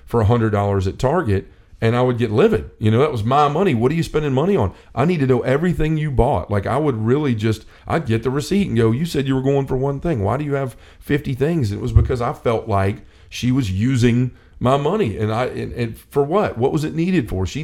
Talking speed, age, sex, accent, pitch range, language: 265 wpm, 40-59, male, American, 105-130 Hz, English